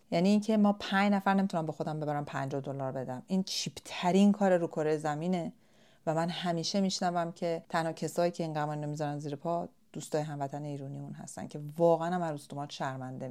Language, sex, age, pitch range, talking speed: Persian, female, 40-59, 165-215 Hz, 195 wpm